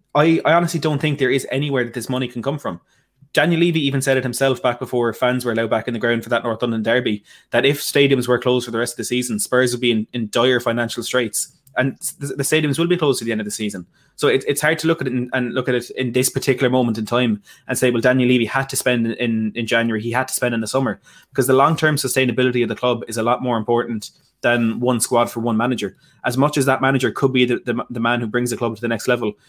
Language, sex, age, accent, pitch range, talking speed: English, male, 20-39, Irish, 115-130 Hz, 280 wpm